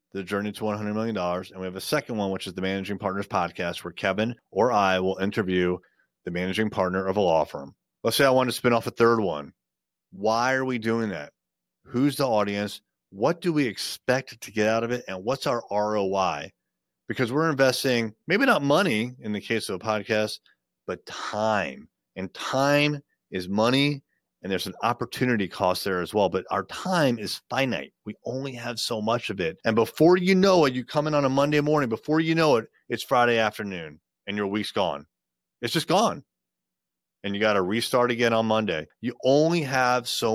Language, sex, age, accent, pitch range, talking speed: English, male, 30-49, American, 100-130 Hz, 205 wpm